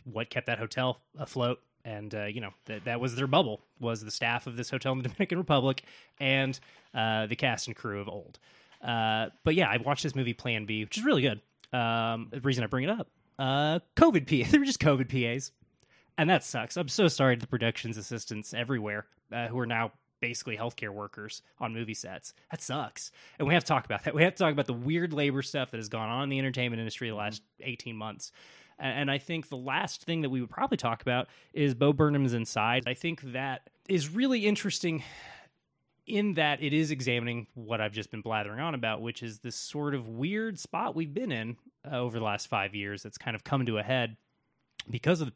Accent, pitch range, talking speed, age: American, 115-155 Hz, 225 wpm, 20-39